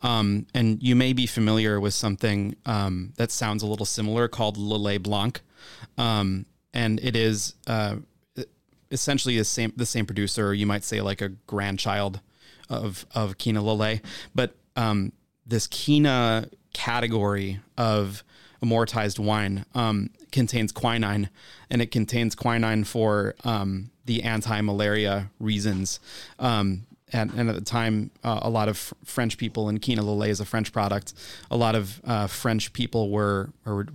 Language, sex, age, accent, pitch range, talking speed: English, male, 30-49, American, 105-115 Hz, 150 wpm